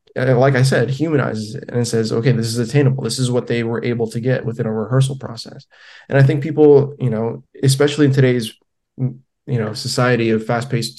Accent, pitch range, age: American, 115-135 Hz, 20-39